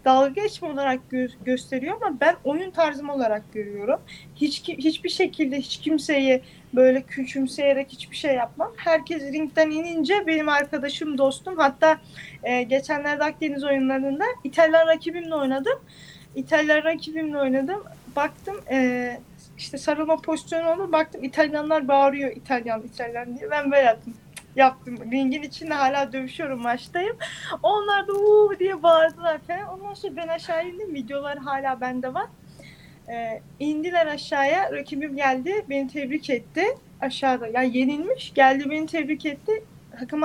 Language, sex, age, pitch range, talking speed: Turkish, female, 20-39, 265-330 Hz, 130 wpm